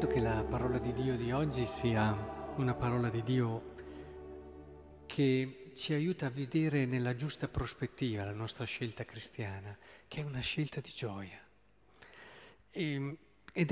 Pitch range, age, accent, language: 125-180 Hz, 40-59, native, Italian